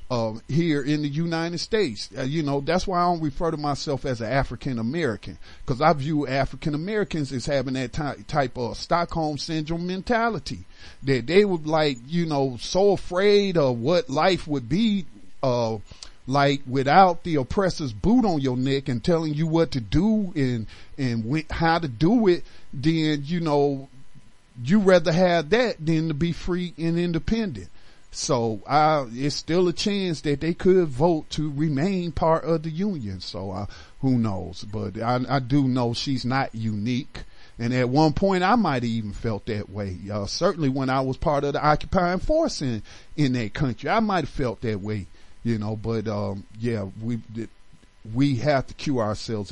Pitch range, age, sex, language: 115-165 Hz, 50-69, male, English